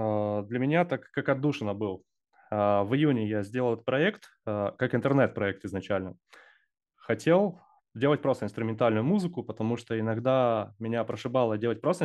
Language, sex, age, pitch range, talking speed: Russian, male, 20-39, 105-130 Hz, 135 wpm